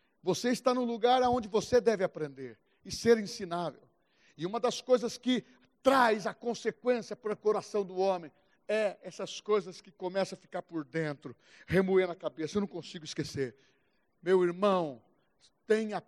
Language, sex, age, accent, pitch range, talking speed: Portuguese, male, 60-79, Brazilian, 185-255 Hz, 160 wpm